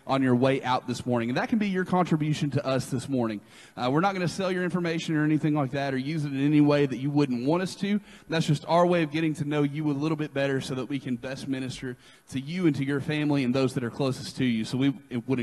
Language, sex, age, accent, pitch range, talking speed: English, male, 30-49, American, 130-160 Hz, 290 wpm